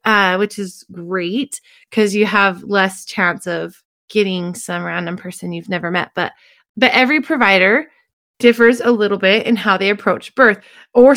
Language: English